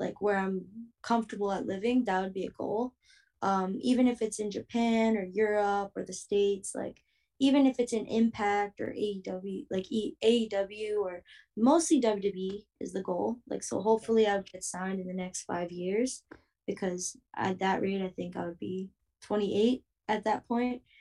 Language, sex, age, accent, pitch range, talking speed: English, female, 20-39, American, 190-225 Hz, 175 wpm